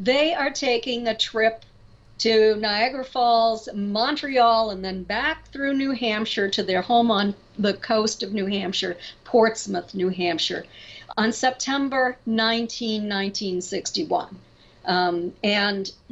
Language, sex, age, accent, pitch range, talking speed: English, female, 50-69, American, 200-260 Hz, 115 wpm